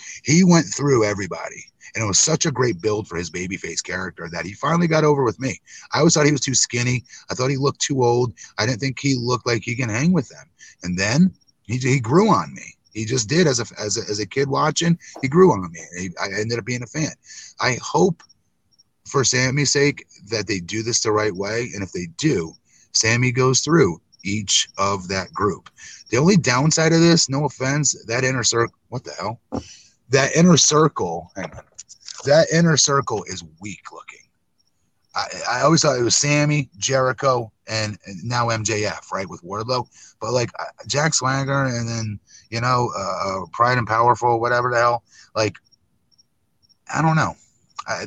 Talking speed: 190 wpm